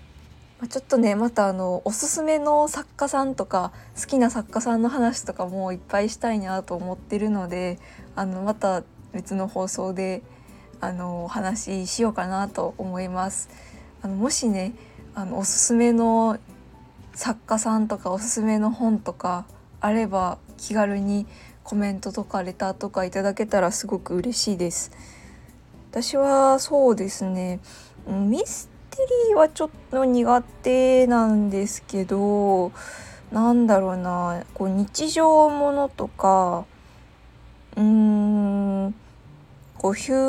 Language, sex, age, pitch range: Japanese, female, 20-39, 185-235 Hz